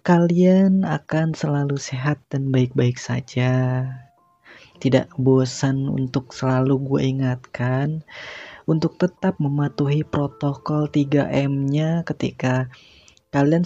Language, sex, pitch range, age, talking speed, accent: Indonesian, female, 130-155 Hz, 20-39, 90 wpm, native